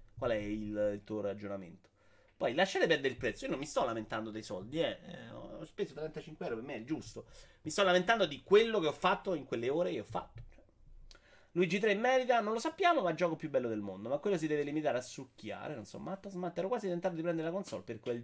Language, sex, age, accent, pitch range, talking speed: Italian, male, 30-49, native, 120-185 Hz, 245 wpm